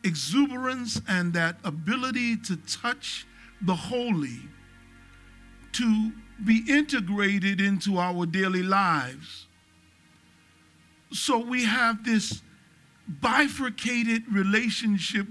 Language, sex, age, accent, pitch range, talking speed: English, male, 50-69, American, 190-245 Hz, 80 wpm